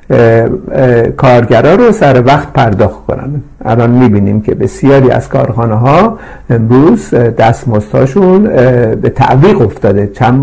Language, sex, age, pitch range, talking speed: Persian, male, 50-69, 110-145 Hz, 125 wpm